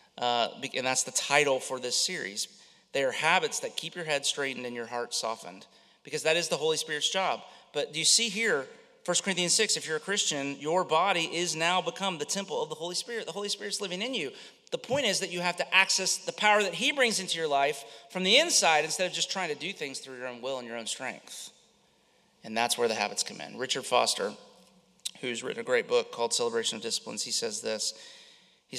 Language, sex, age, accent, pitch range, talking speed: English, male, 30-49, American, 120-205 Hz, 235 wpm